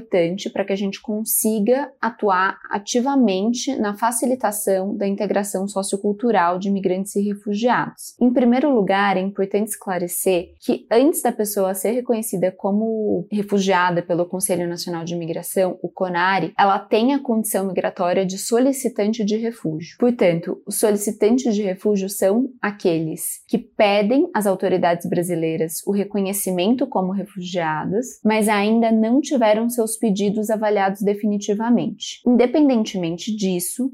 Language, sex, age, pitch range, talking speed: Portuguese, female, 20-39, 190-235 Hz, 125 wpm